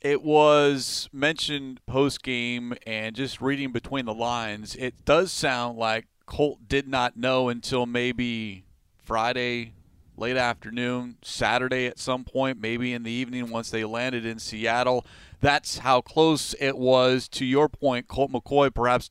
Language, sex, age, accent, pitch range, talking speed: English, male, 30-49, American, 120-160 Hz, 150 wpm